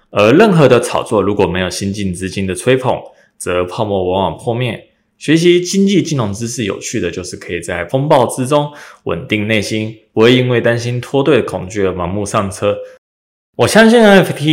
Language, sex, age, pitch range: Chinese, male, 20-39, 95-125 Hz